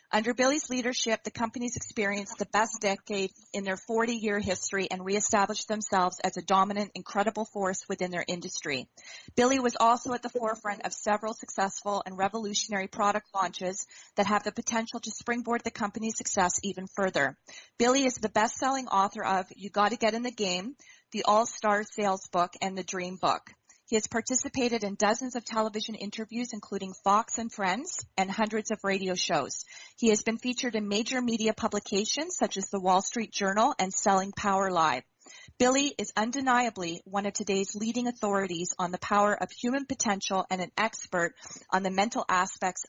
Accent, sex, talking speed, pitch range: American, female, 175 wpm, 190-230 Hz